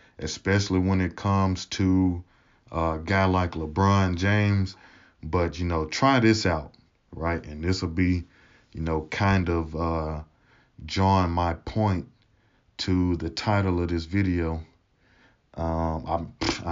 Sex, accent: male, American